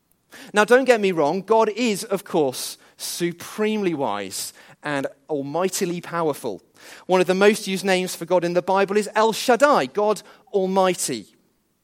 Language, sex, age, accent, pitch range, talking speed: English, male, 40-59, British, 180-235 Hz, 150 wpm